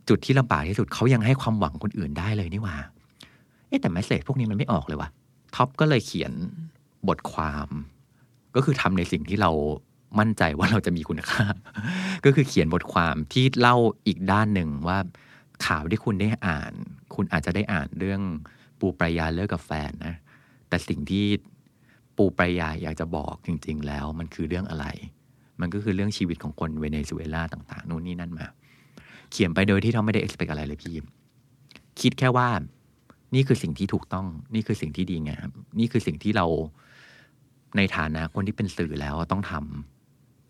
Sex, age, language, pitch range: male, 30-49, Thai, 80-115 Hz